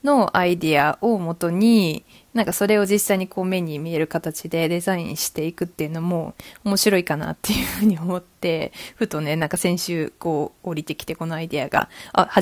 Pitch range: 165-205 Hz